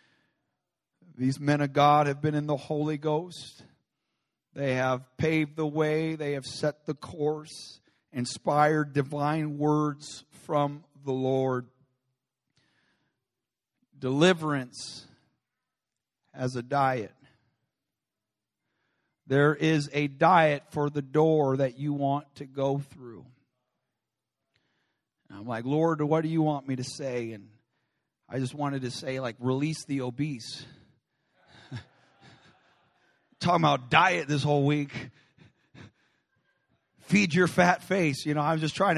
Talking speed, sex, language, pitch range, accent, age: 120 wpm, male, English, 130-155 Hz, American, 50-69